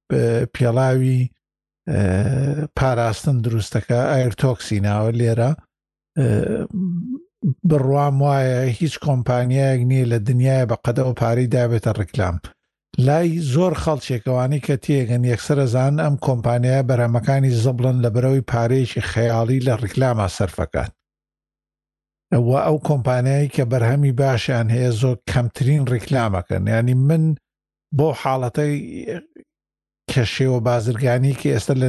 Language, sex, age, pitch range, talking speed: Arabic, male, 50-69, 115-135 Hz, 125 wpm